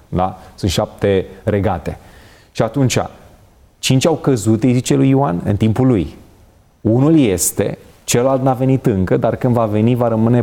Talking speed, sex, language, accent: 160 wpm, male, Romanian, native